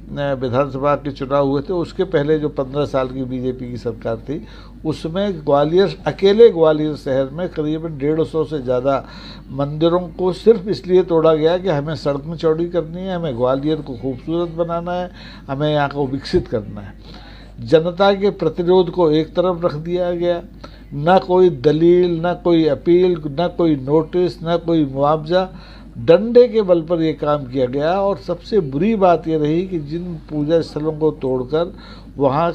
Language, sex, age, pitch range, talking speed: Hindi, male, 60-79, 145-180 Hz, 170 wpm